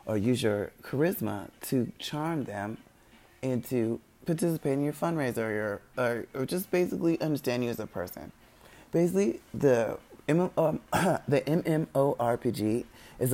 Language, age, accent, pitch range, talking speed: English, 20-39, American, 115-145 Hz, 135 wpm